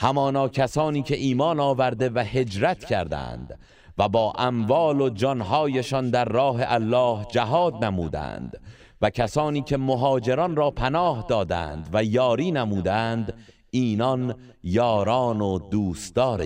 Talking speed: 115 wpm